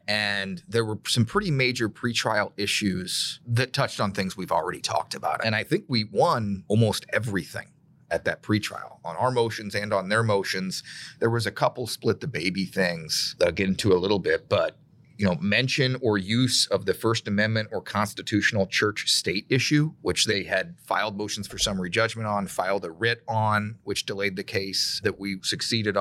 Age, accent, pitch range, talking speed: 30-49, American, 100-120 Hz, 190 wpm